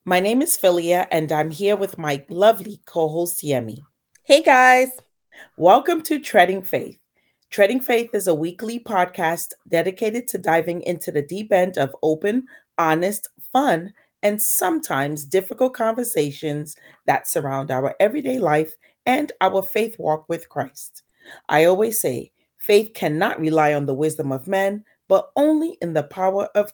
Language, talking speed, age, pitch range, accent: English, 150 wpm, 30-49, 160-245 Hz, American